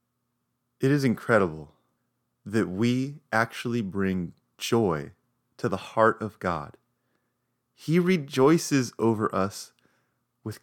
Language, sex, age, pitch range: English, male, 30-49, 95-125 Hz